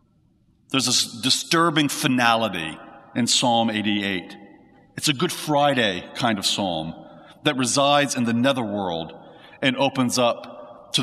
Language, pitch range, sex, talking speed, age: English, 105-140 Hz, male, 125 wpm, 40-59